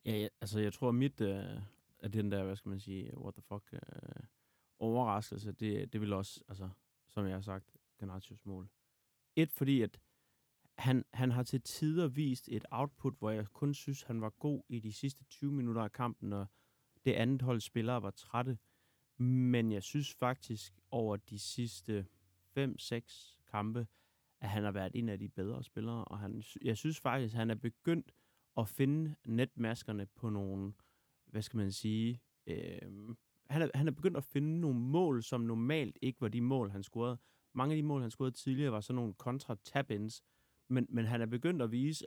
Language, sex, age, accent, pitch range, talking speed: Danish, male, 30-49, native, 105-130 Hz, 195 wpm